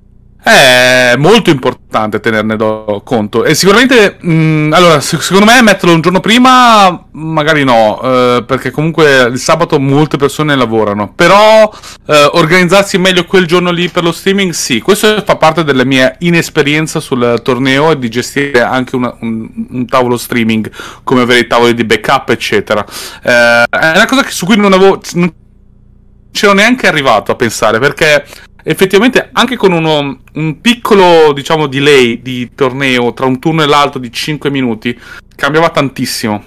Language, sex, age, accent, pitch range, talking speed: Italian, male, 30-49, native, 120-165 Hz, 155 wpm